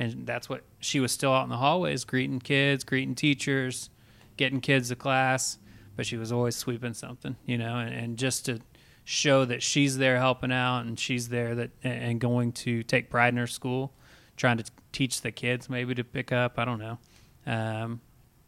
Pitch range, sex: 115-125 Hz, male